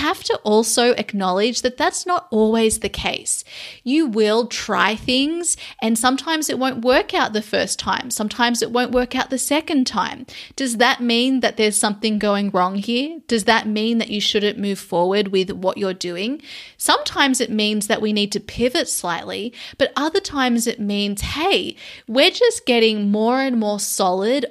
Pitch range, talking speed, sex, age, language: 210-255 Hz, 180 wpm, female, 20-39, English